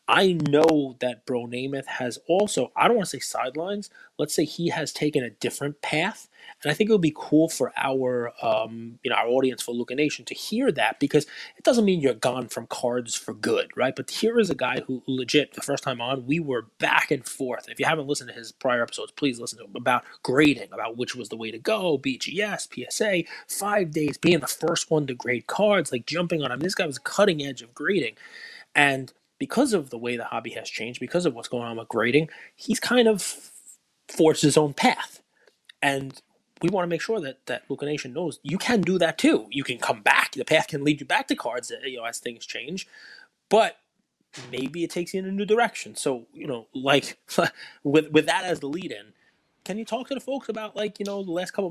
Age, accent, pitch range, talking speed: 30-49, American, 130-200 Hz, 235 wpm